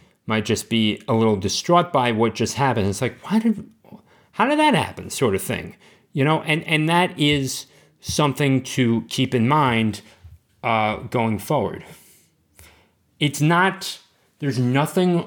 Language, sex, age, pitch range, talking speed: English, male, 30-49, 115-150 Hz, 155 wpm